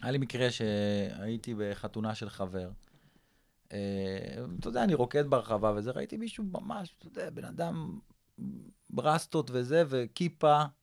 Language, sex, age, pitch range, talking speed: Hebrew, male, 30-49, 110-140 Hz, 125 wpm